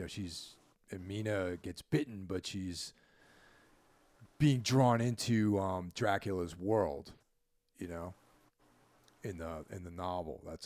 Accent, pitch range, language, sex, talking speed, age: American, 85-120 Hz, English, male, 125 wpm, 40-59